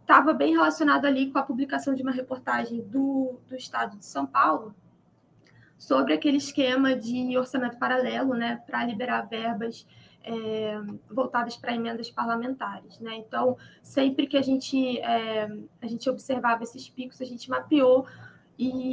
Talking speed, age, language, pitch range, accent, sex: 140 wpm, 20-39, Portuguese, 235-275 Hz, Brazilian, female